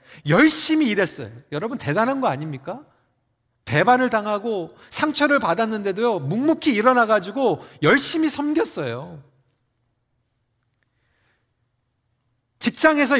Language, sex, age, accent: Korean, male, 40-59, native